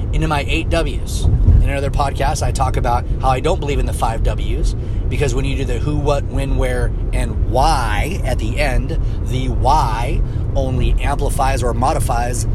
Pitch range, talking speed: 100-120 Hz, 180 wpm